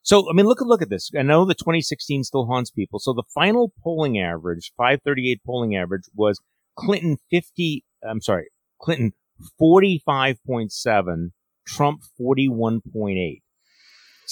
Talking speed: 135 wpm